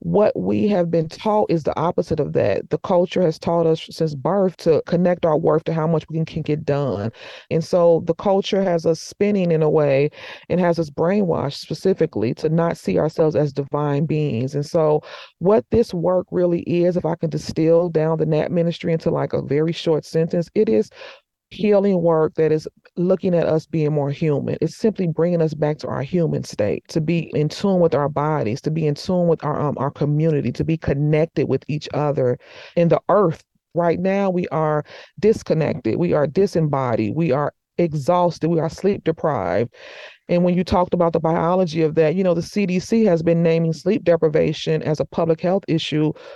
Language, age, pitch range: English, 40-59, 155-180 Hz